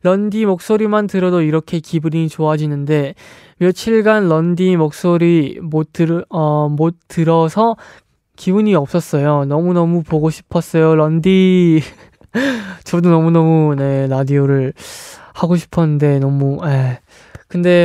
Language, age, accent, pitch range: Korean, 20-39, native, 150-180 Hz